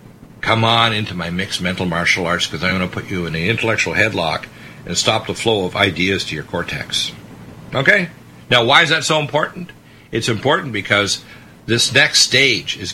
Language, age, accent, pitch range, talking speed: English, 60-79, American, 95-125 Hz, 190 wpm